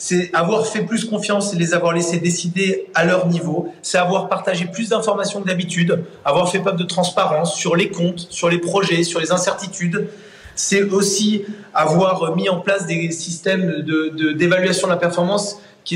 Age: 30-49